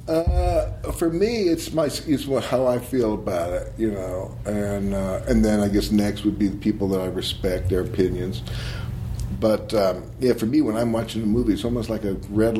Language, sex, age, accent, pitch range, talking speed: English, male, 50-69, American, 100-120 Hz, 215 wpm